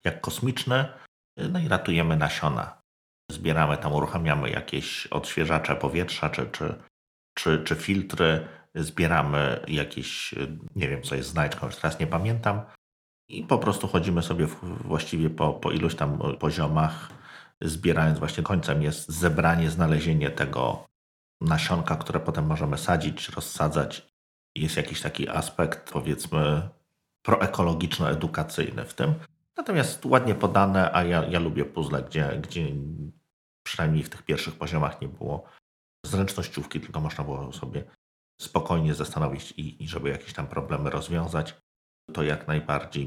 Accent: native